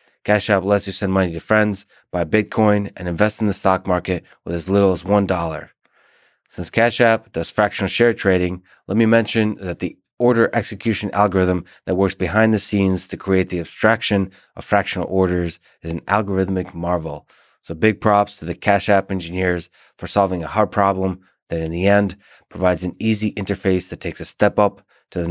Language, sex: English, male